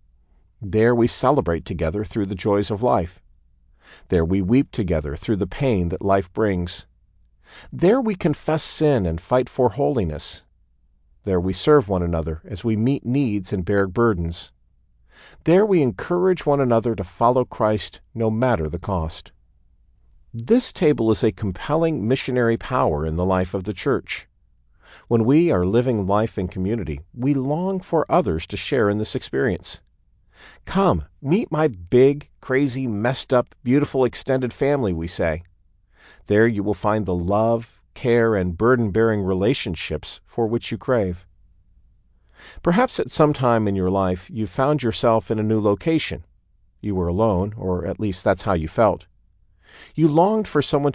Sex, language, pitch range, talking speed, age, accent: male, English, 90-125 Hz, 160 wpm, 50-69, American